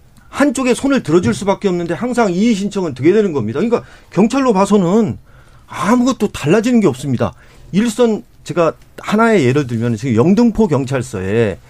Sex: male